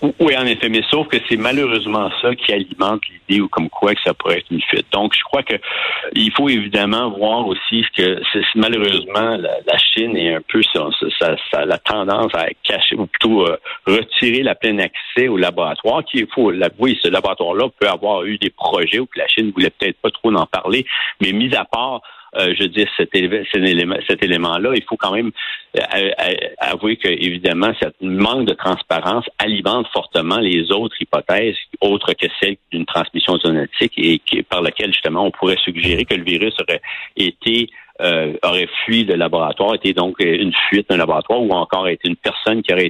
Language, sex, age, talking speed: French, male, 60-79, 190 wpm